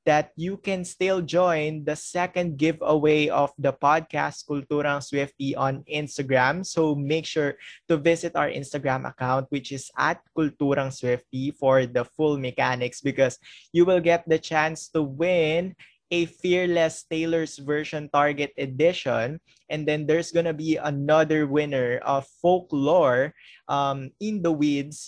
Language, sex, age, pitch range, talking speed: Filipino, male, 20-39, 130-160 Hz, 140 wpm